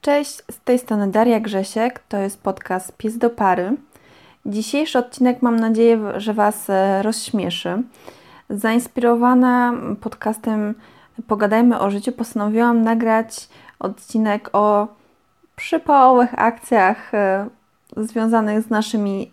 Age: 20-39